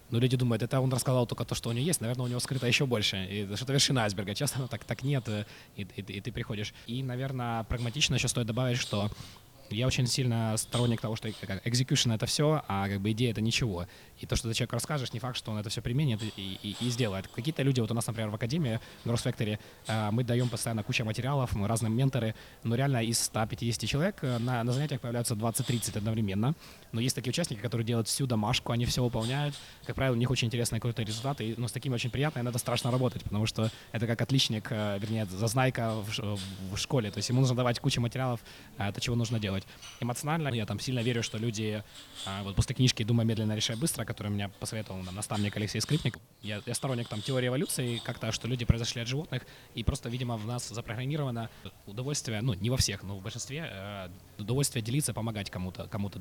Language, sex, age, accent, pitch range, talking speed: Ukrainian, male, 20-39, native, 110-130 Hz, 215 wpm